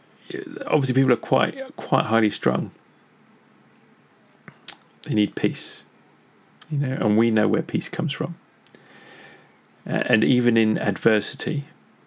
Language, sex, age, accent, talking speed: English, male, 40-59, British, 115 wpm